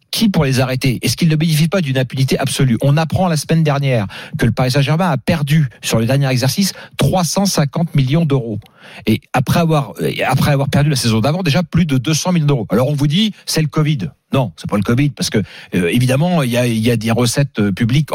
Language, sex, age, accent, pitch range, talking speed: French, male, 40-59, French, 125-175 Hz, 230 wpm